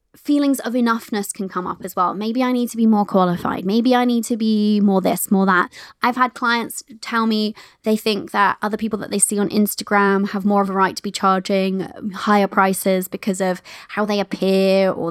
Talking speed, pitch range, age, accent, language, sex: 220 wpm, 195-240 Hz, 20-39, British, English, female